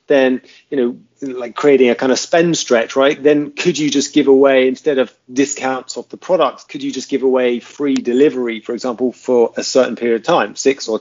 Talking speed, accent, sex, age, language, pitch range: 220 wpm, British, male, 30-49, English, 115-140 Hz